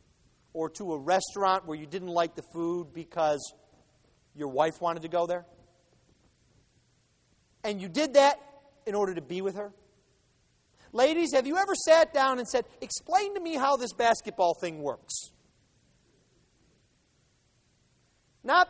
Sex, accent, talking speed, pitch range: male, American, 140 wpm, 180-285 Hz